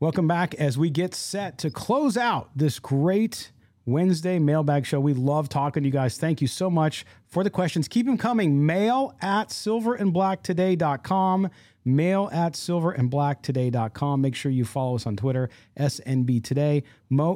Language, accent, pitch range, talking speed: English, American, 125-170 Hz, 160 wpm